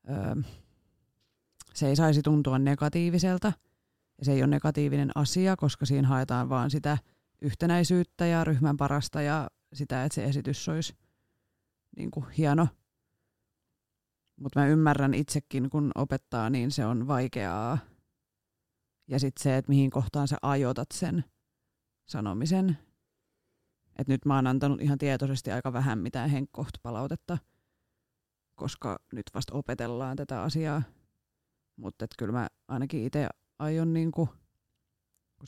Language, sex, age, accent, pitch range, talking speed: Finnish, female, 30-49, native, 130-150 Hz, 125 wpm